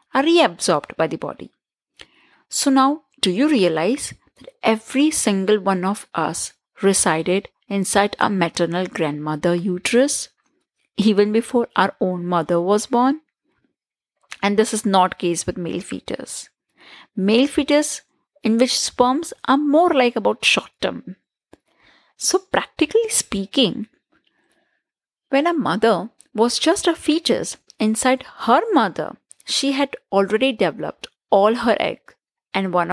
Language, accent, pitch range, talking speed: English, Indian, 195-275 Hz, 130 wpm